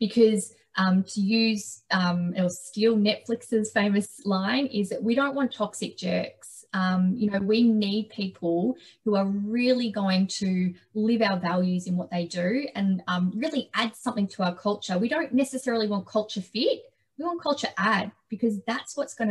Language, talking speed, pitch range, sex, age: English, 175 wpm, 190-240 Hz, female, 20-39